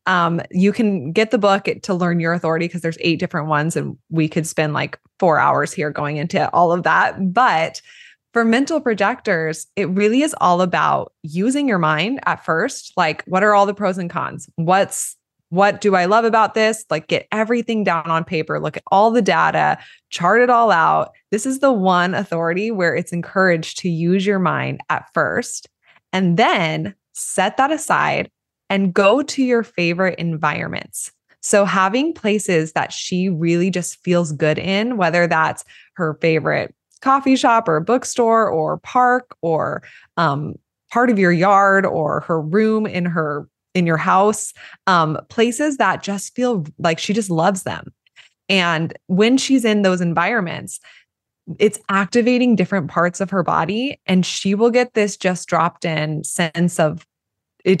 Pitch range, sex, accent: 165-215 Hz, female, American